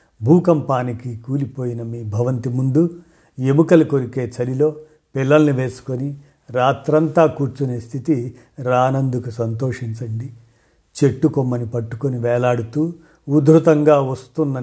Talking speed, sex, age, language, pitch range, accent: 85 wpm, male, 50-69, Telugu, 120-145 Hz, native